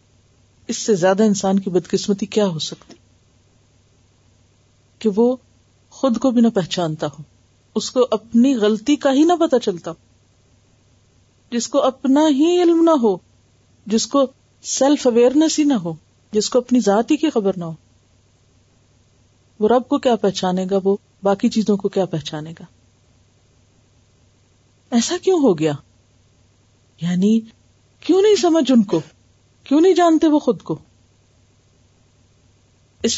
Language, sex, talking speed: Urdu, female, 140 wpm